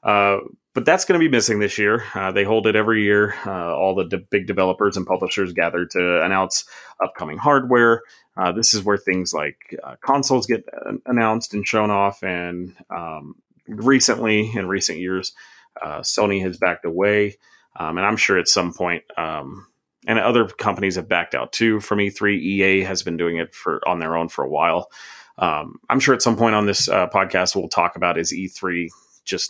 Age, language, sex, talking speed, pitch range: 30-49, English, male, 200 wpm, 95-115 Hz